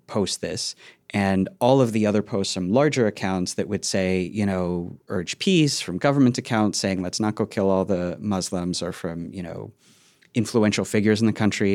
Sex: male